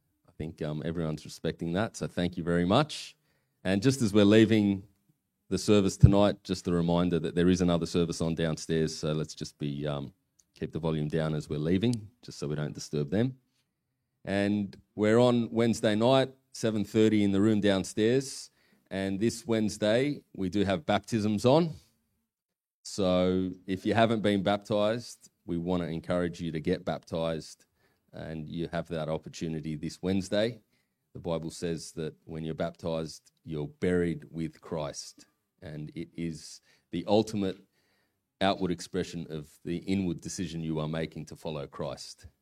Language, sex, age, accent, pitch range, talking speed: English, male, 30-49, Australian, 80-105 Hz, 160 wpm